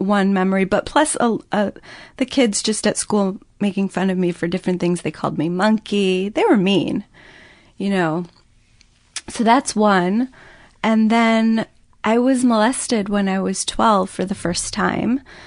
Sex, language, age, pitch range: female, English, 30-49, 190-220 Hz